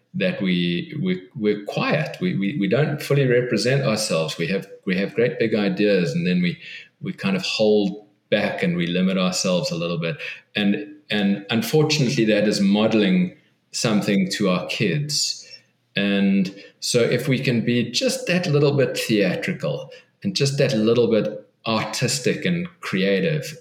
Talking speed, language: 160 wpm, English